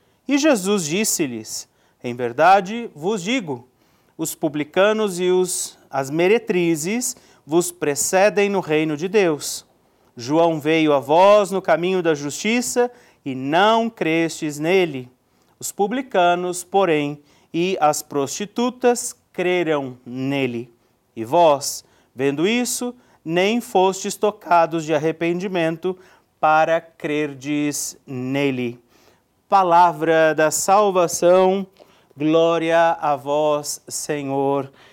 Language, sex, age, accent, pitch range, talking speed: Portuguese, male, 40-59, Brazilian, 155-205 Hz, 100 wpm